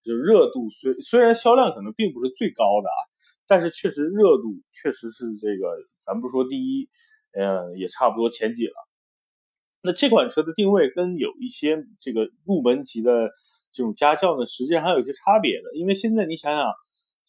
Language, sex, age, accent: Chinese, male, 30-49, native